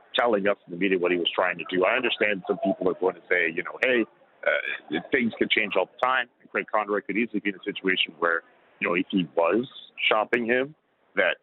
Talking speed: 245 wpm